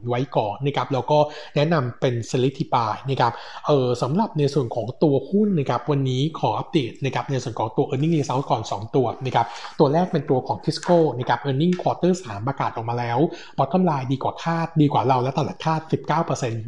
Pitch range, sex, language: 125-160 Hz, male, Thai